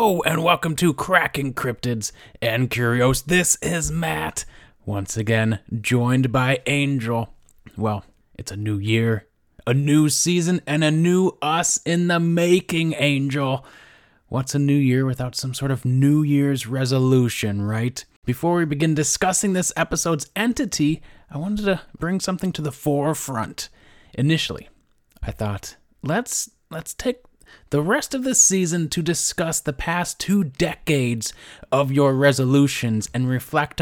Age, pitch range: 30-49, 125-170 Hz